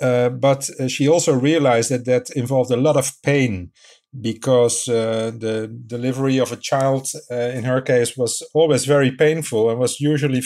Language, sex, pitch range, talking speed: English, male, 120-145 Hz, 180 wpm